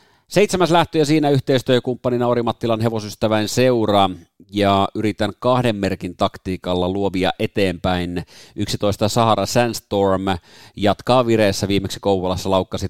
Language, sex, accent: Finnish, male, native